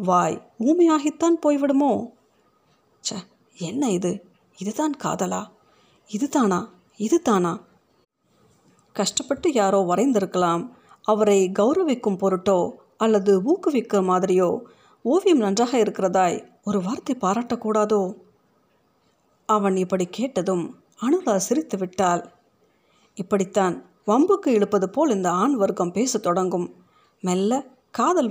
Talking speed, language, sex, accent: 90 wpm, Tamil, female, native